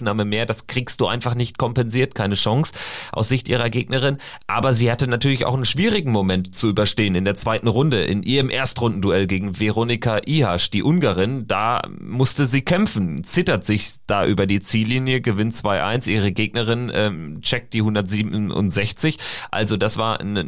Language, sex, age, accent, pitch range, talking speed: German, male, 30-49, German, 105-130 Hz, 165 wpm